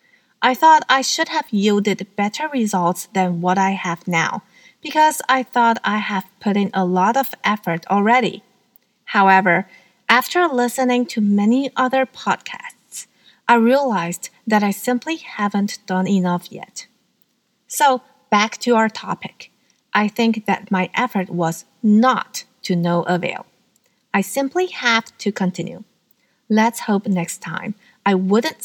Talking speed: 140 wpm